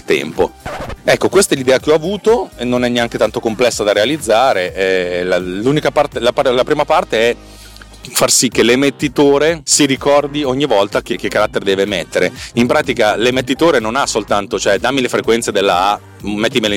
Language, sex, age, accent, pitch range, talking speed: Italian, male, 40-59, native, 100-145 Hz, 185 wpm